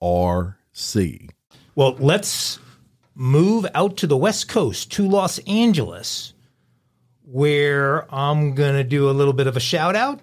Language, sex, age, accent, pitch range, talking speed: English, male, 50-69, American, 115-145 Hz, 135 wpm